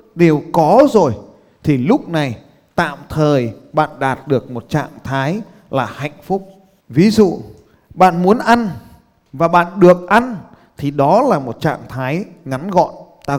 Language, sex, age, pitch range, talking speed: Vietnamese, male, 20-39, 135-210 Hz, 155 wpm